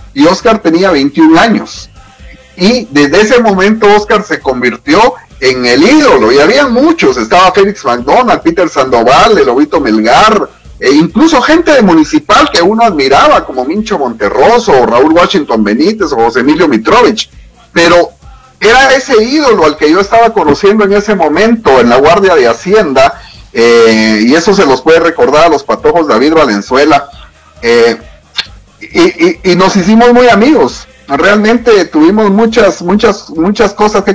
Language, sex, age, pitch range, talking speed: Spanish, male, 40-59, 160-260 Hz, 155 wpm